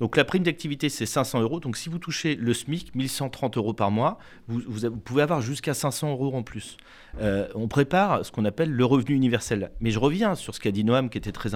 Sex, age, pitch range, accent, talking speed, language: male, 40-59, 110-150 Hz, French, 245 wpm, French